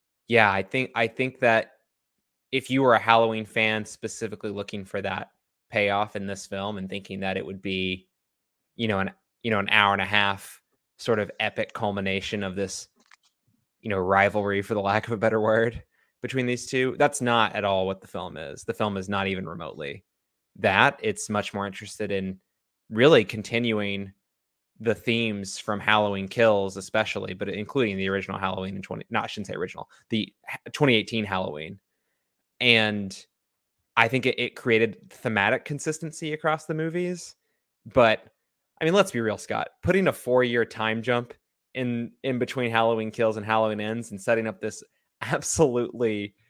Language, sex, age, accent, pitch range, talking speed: English, male, 20-39, American, 100-125 Hz, 175 wpm